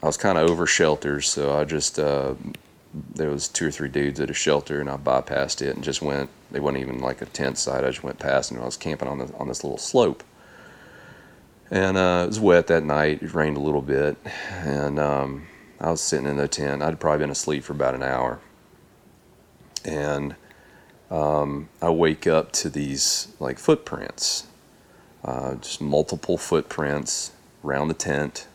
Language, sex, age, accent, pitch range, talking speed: English, male, 30-49, American, 70-80 Hz, 195 wpm